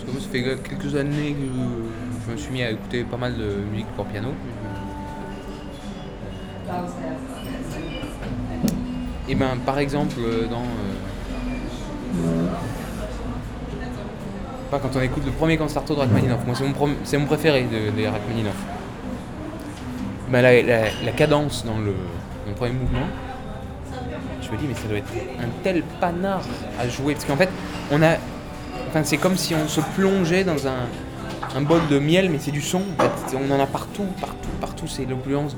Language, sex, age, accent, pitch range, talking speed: French, male, 20-39, French, 120-155 Hz, 165 wpm